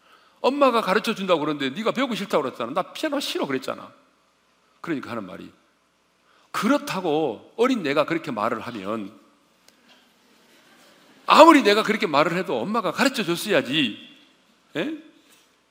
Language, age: Korean, 40-59